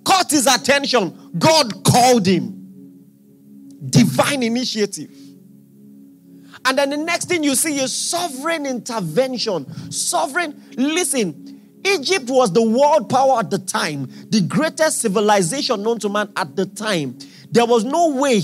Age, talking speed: 40-59, 135 wpm